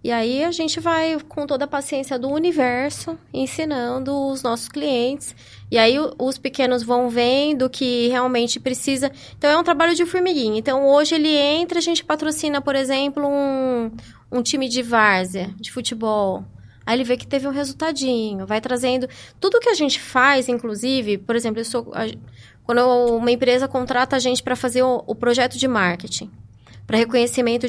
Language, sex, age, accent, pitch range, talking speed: Portuguese, female, 20-39, Brazilian, 230-280 Hz, 170 wpm